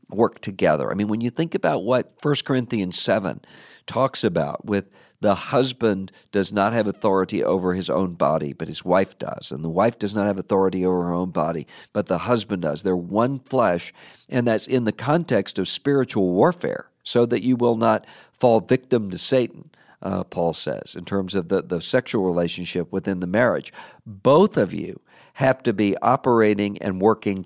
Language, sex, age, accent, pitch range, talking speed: English, male, 50-69, American, 95-120 Hz, 190 wpm